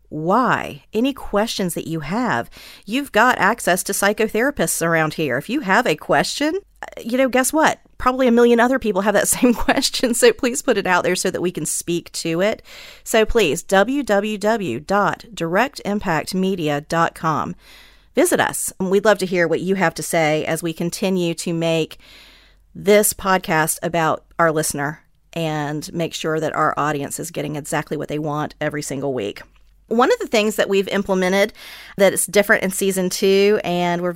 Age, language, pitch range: 40-59, English, 170-225 Hz